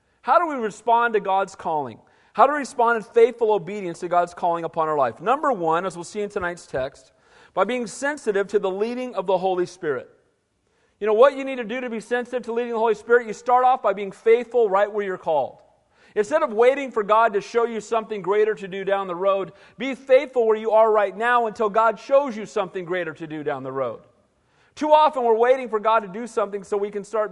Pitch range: 200-255 Hz